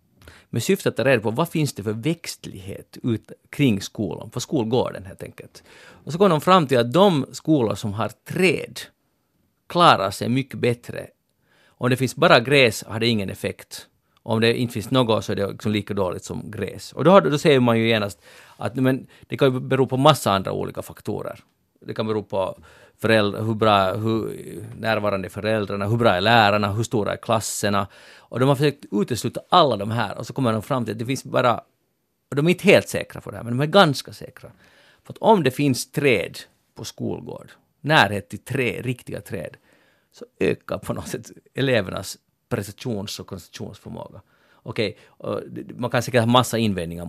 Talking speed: 200 wpm